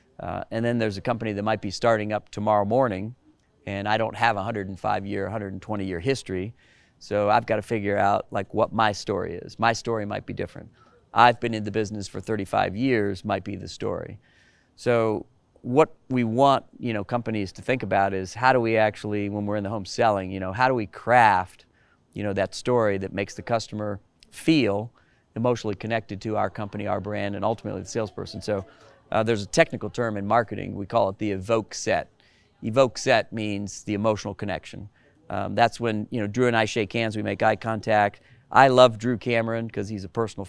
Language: English